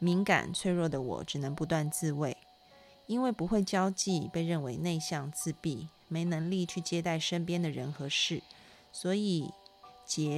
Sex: female